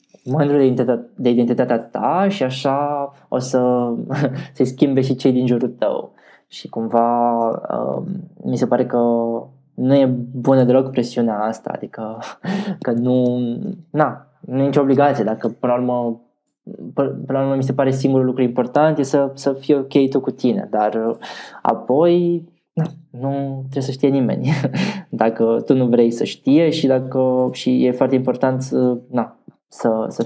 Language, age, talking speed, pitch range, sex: Romanian, 20-39, 155 wpm, 115-135 Hz, male